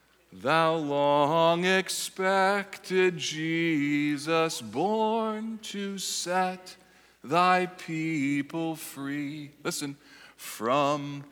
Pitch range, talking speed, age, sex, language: 160-205 Hz, 65 wpm, 50-69, male, English